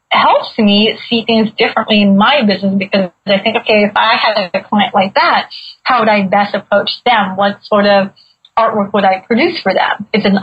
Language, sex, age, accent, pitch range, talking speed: English, female, 30-49, American, 200-235 Hz, 205 wpm